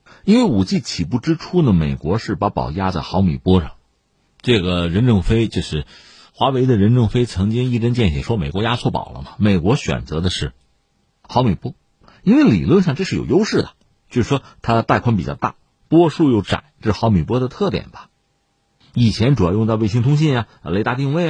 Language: Chinese